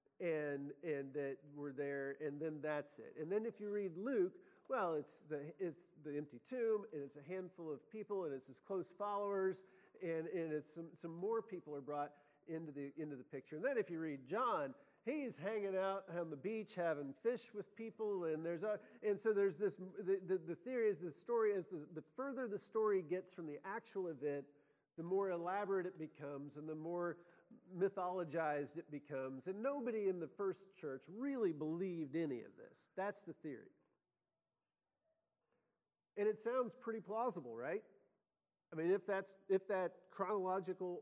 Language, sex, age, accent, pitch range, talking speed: English, male, 50-69, American, 150-205 Hz, 195 wpm